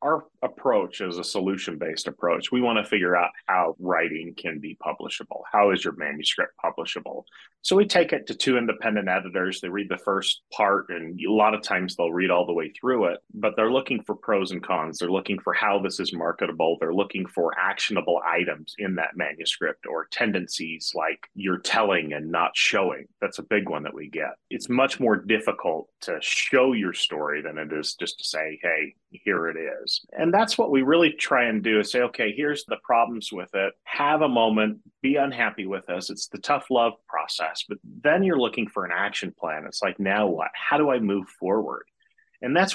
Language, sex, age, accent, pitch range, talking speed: English, male, 30-49, American, 90-120 Hz, 210 wpm